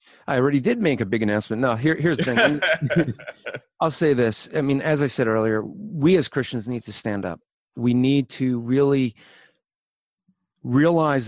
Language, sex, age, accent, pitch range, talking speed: English, male, 40-59, American, 120-160 Hz, 170 wpm